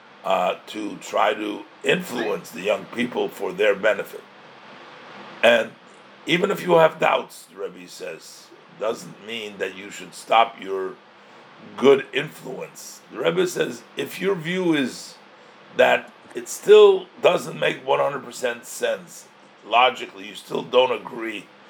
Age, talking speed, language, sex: 50-69, 135 wpm, English, male